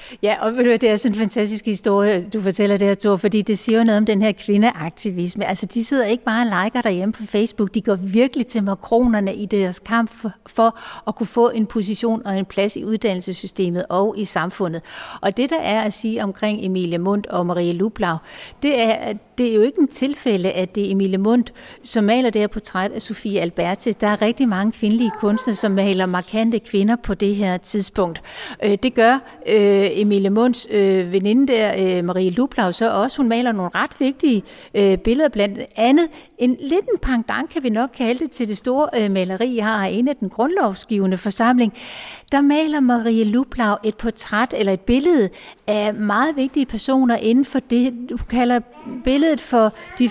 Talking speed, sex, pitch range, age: 195 wpm, female, 200-245 Hz, 60-79